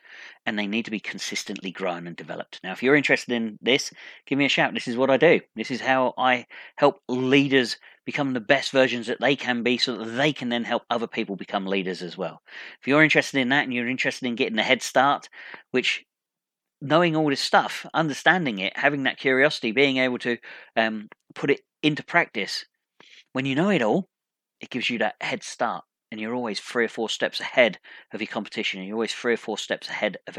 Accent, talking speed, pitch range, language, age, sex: British, 220 wpm, 115-140 Hz, English, 40-59, male